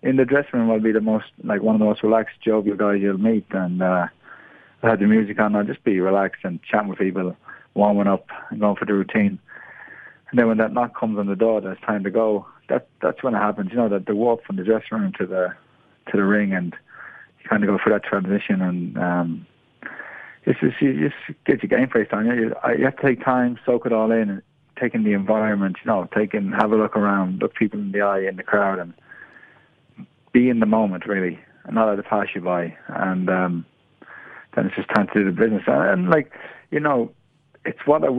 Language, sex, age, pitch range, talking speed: English, male, 20-39, 100-120 Hz, 235 wpm